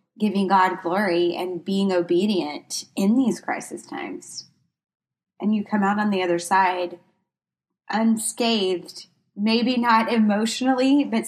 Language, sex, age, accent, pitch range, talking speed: English, female, 20-39, American, 190-245 Hz, 120 wpm